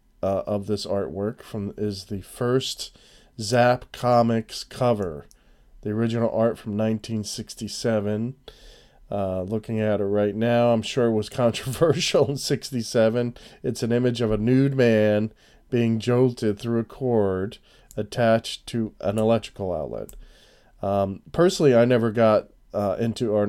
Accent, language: American, English